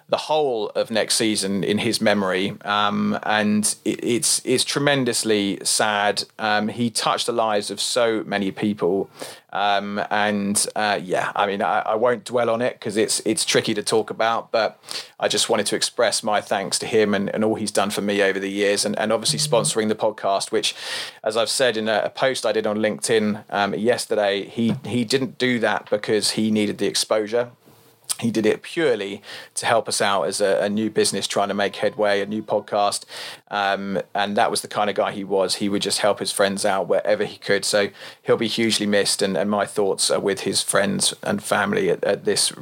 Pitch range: 100-120 Hz